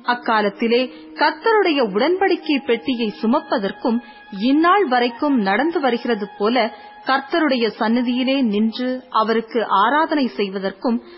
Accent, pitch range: native, 215-295 Hz